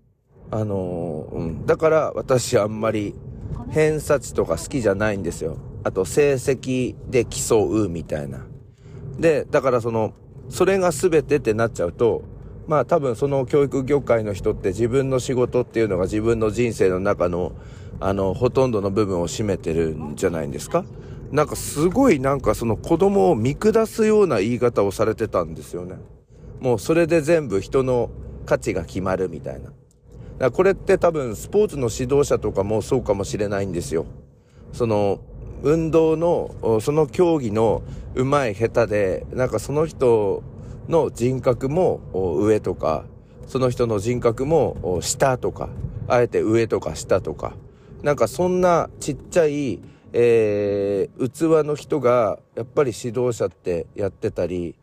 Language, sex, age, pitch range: Japanese, male, 40-59, 110-145 Hz